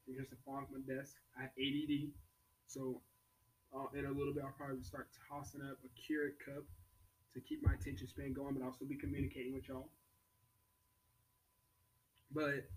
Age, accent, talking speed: 20-39, American, 170 wpm